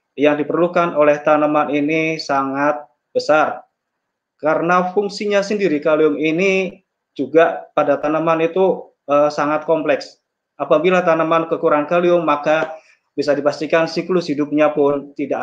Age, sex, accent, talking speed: 20-39, male, native, 115 wpm